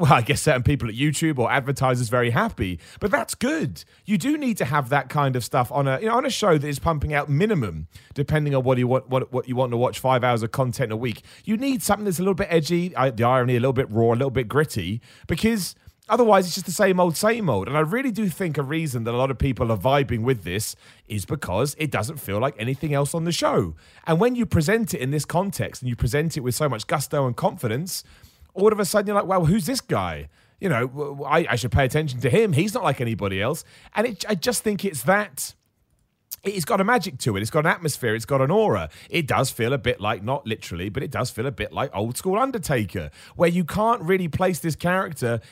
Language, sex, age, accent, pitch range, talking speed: English, male, 30-49, British, 120-180 Hz, 255 wpm